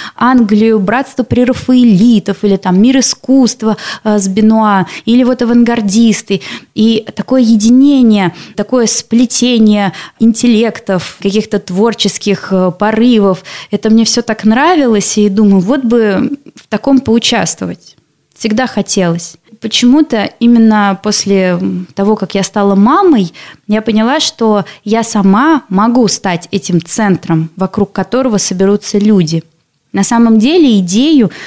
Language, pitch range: Russian, 195-240 Hz